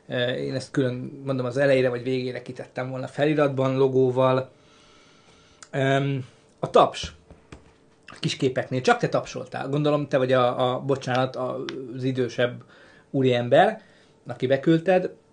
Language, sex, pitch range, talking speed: Hungarian, male, 130-150 Hz, 115 wpm